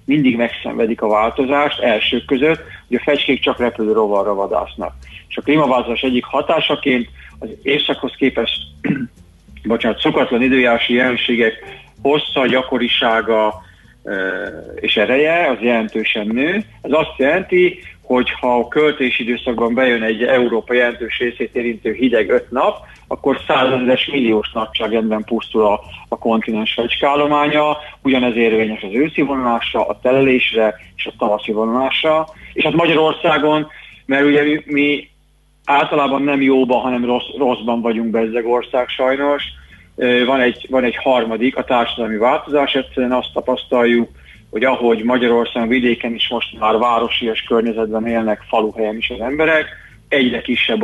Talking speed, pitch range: 135 wpm, 115-135 Hz